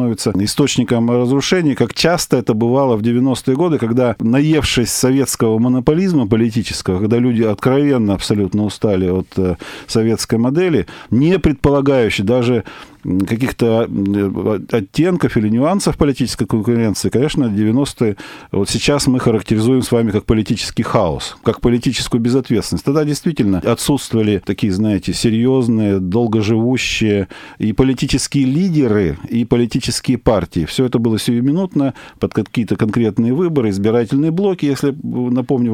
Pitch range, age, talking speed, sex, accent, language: 105-130 Hz, 40-59, 120 wpm, male, native, Russian